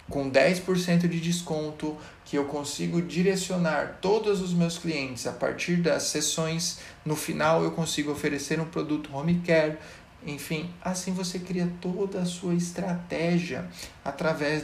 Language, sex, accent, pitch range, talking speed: Portuguese, male, Brazilian, 140-175 Hz, 140 wpm